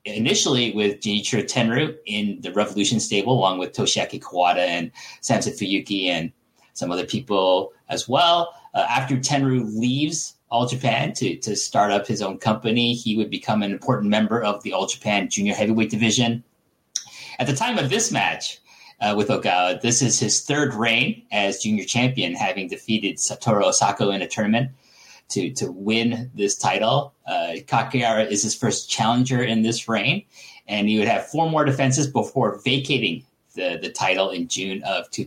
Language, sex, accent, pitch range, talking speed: English, male, American, 105-135 Hz, 170 wpm